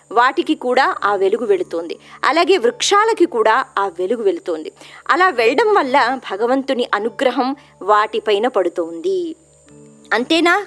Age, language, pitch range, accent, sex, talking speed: 20-39, Telugu, 230-360 Hz, native, male, 105 wpm